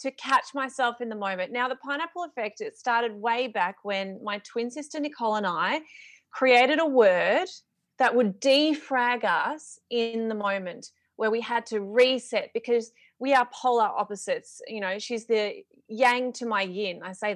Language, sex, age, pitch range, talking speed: English, female, 30-49, 200-260 Hz, 175 wpm